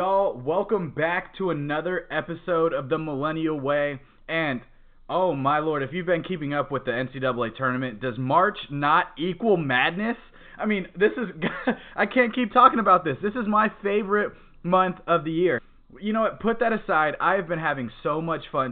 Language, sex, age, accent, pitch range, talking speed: English, male, 20-39, American, 125-175 Hz, 185 wpm